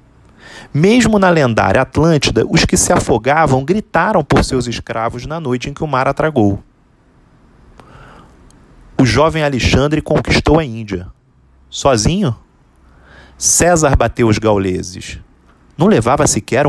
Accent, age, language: Brazilian, 30-49, Portuguese